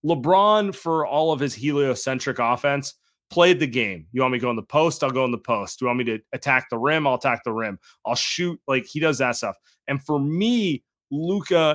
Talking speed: 230 wpm